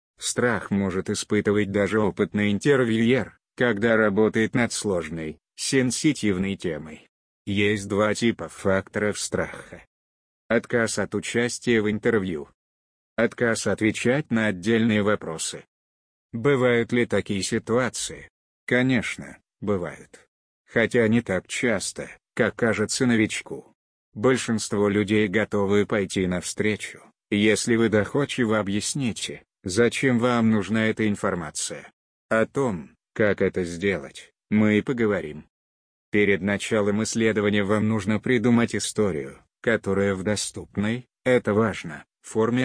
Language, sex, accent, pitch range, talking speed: Russian, male, native, 95-115 Hz, 105 wpm